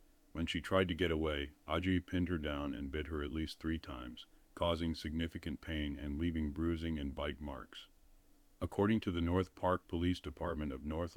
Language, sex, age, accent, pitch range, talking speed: English, male, 40-59, American, 75-85 Hz, 190 wpm